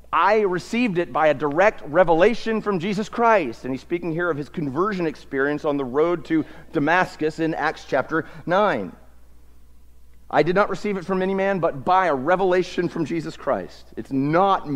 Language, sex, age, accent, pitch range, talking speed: English, male, 40-59, American, 105-175 Hz, 180 wpm